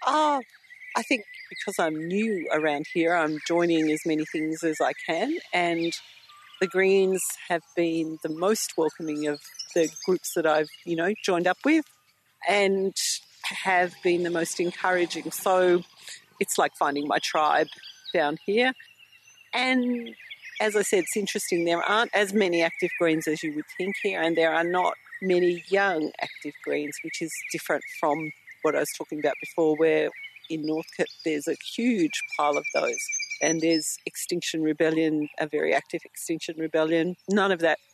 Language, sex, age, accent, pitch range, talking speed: English, female, 50-69, Australian, 160-195 Hz, 165 wpm